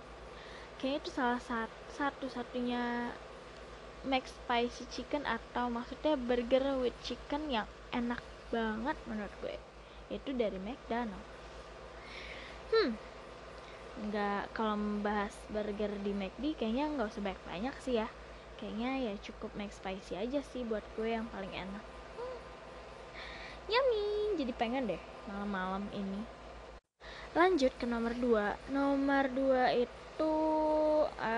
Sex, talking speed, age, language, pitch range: female, 115 wpm, 20-39, Indonesian, 225-285 Hz